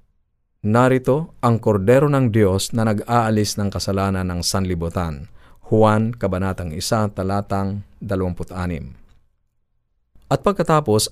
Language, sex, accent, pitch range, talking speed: Filipino, male, native, 100-120 Hz, 95 wpm